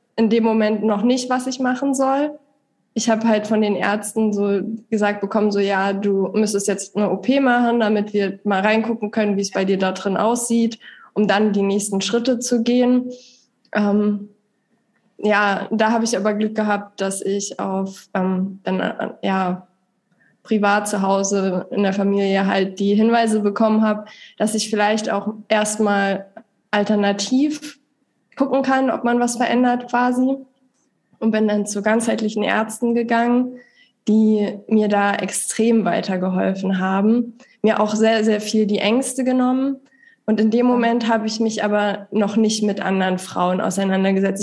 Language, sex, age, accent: German, female, 20-39, German